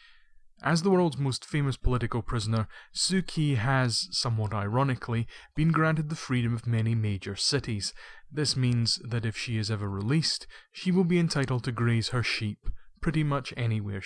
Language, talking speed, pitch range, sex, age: English, 165 wpm, 110-150 Hz, male, 30-49